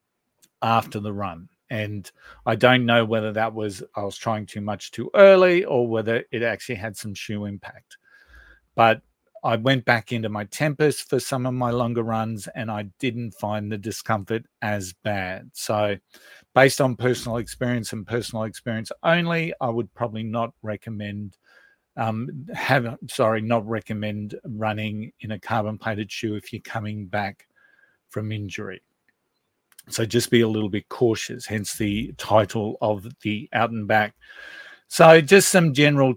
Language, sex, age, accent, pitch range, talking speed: English, male, 50-69, Australian, 105-125 Hz, 160 wpm